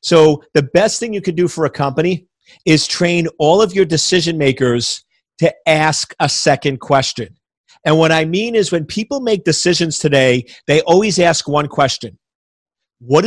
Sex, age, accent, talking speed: male, 40-59, American, 170 wpm